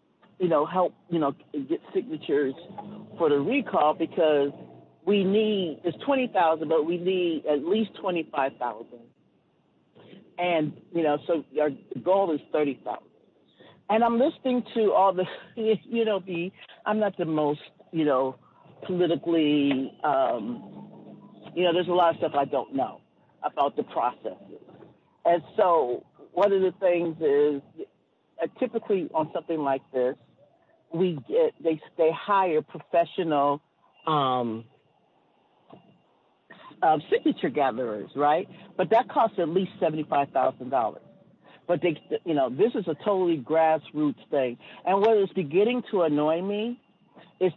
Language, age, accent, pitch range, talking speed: English, 50-69, American, 155-210 Hz, 140 wpm